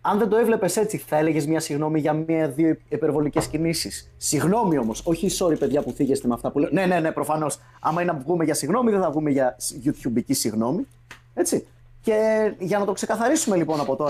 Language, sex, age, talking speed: Greek, male, 30-49, 180 wpm